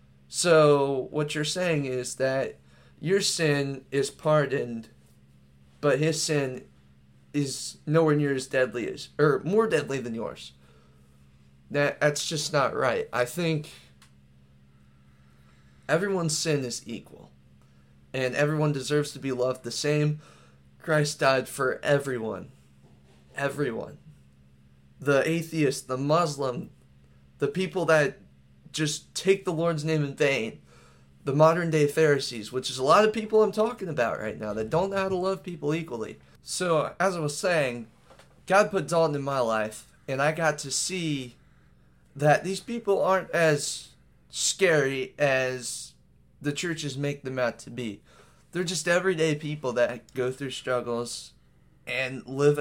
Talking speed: 140 wpm